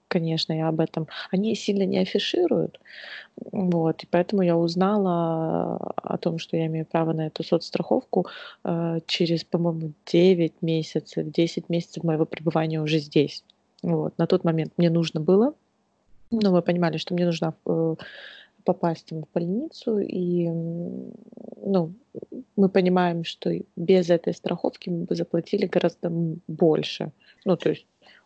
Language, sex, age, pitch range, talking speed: Russian, female, 20-39, 160-195 Hz, 140 wpm